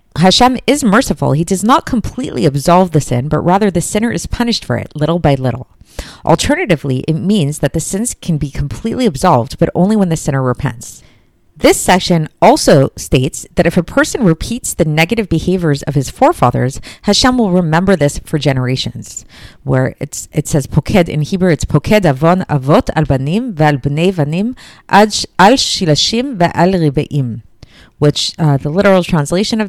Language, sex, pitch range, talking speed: English, female, 145-195 Hz, 145 wpm